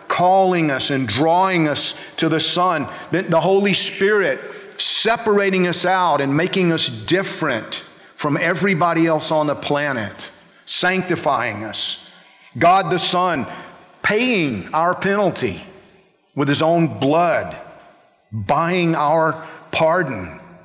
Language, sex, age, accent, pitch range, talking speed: English, male, 50-69, American, 160-195 Hz, 115 wpm